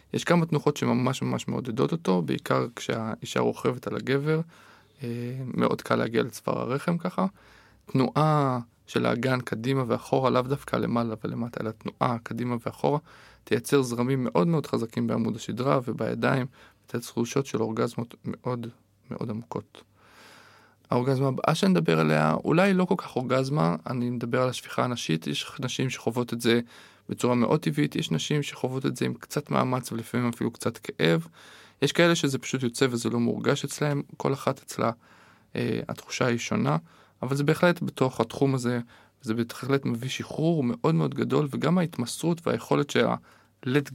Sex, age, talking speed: male, 20-39, 155 wpm